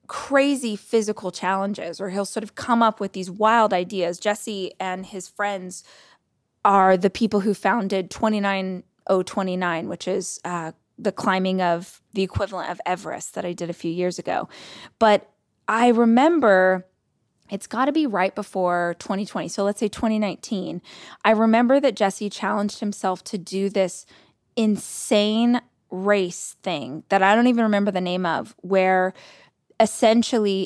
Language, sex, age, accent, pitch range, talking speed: English, female, 20-39, American, 185-225 Hz, 150 wpm